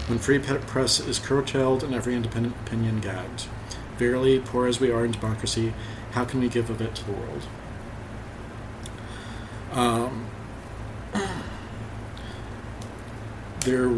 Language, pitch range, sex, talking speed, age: English, 110-120 Hz, male, 120 wpm, 40-59